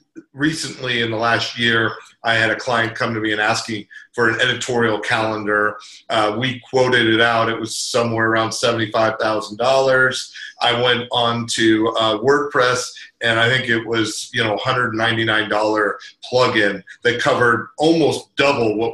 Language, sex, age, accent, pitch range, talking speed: English, male, 40-59, American, 110-135 Hz, 170 wpm